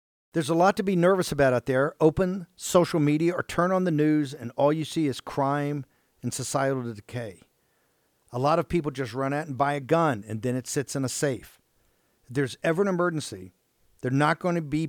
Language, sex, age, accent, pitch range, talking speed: English, male, 50-69, American, 130-165 Hz, 220 wpm